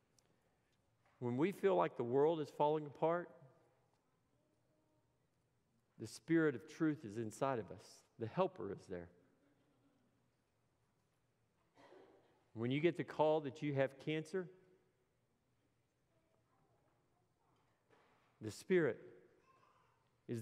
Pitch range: 130-175 Hz